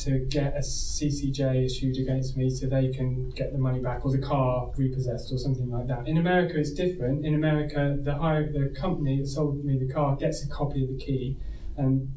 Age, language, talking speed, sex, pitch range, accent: 20-39, English, 215 wpm, male, 130-145 Hz, British